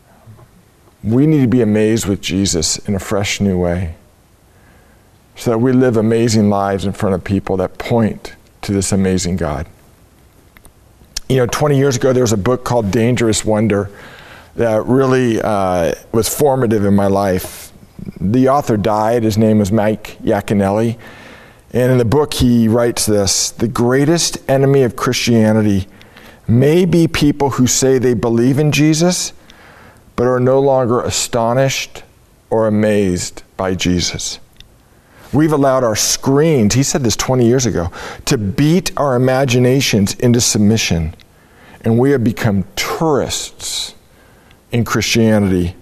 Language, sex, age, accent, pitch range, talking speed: English, male, 40-59, American, 100-125 Hz, 145 wpm